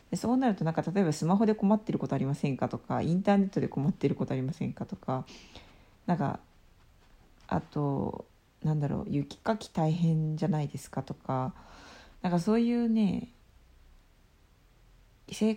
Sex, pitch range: female, 135-185 Hz